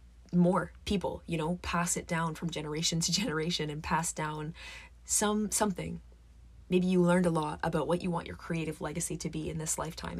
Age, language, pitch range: 20-39, English, 145-170 Hz